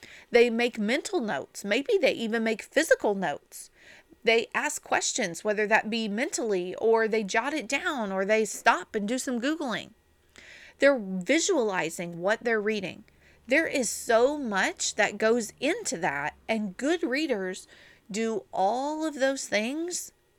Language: English